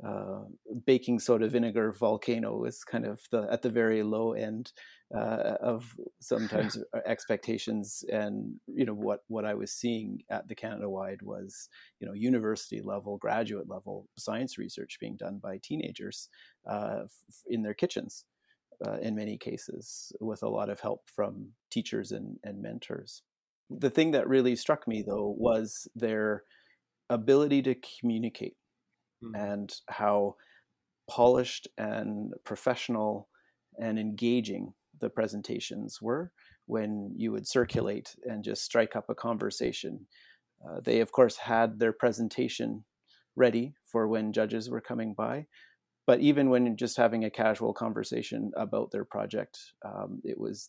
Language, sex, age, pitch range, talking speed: English, male, 30-49, 105-120 Hz, 145 wpm